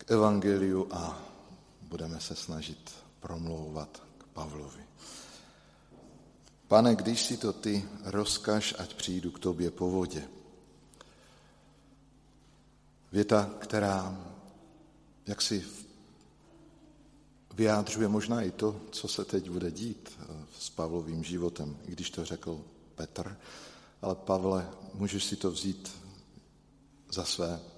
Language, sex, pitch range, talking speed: Slovak, male, 90-105 Hz, 105 wpm